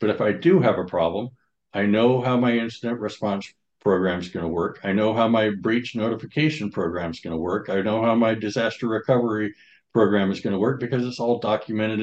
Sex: male